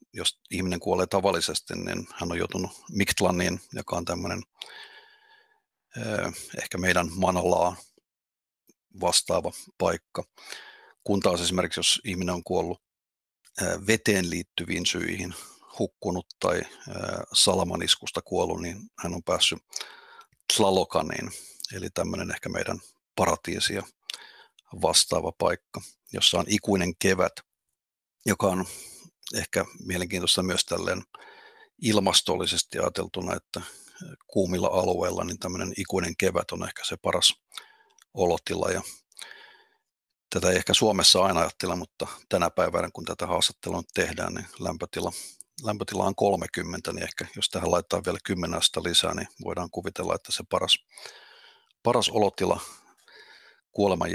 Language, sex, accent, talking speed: Finnish, male, native, 115 wpm